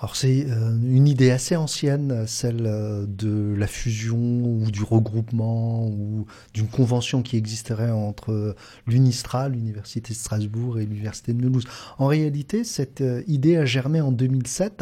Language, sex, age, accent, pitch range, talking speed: French, male, 40-59, French, 120-155 Hz, 140 wpm